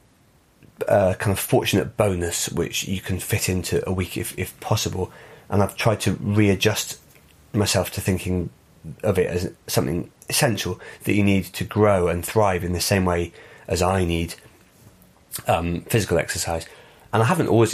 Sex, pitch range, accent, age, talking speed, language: male, 90-115 Hz, British, 30-49, 165 wpm, English